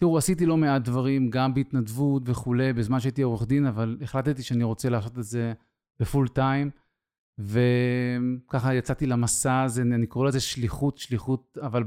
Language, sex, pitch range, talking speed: Hebrew, male, 120-140 Hz, 155 wpm